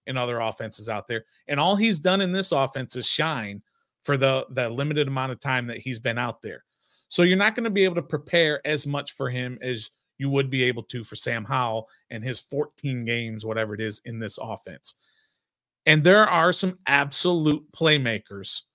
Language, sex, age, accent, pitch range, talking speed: English, male, 30-49, American, 120-155 Hz, 205 wpm